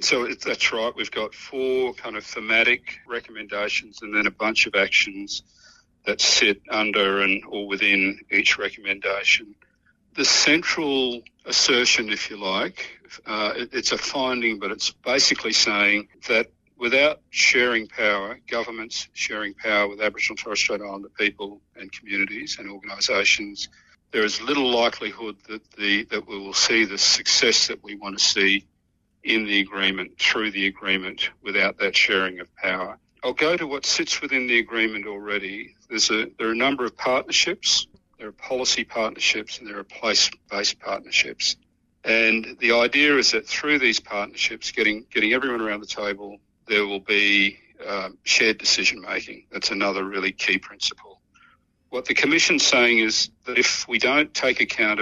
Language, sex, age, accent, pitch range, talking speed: English, male, 50-69, Australian, 100-115 Hz, 165 wpm